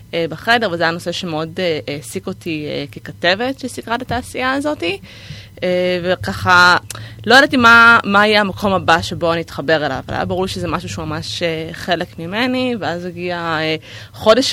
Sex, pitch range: female, 160-205 Hz